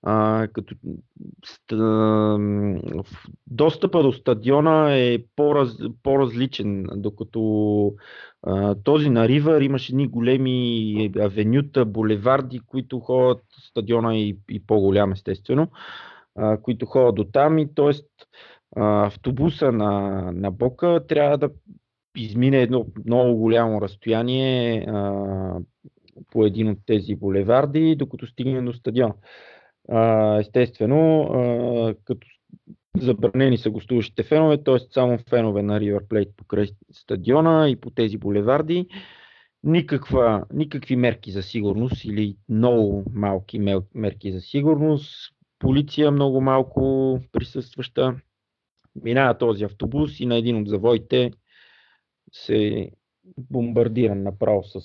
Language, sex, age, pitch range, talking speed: Bulgarian, male, 30-49, 105-130 Hz, 100 wpm